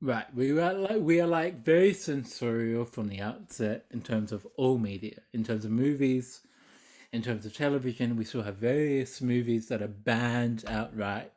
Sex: male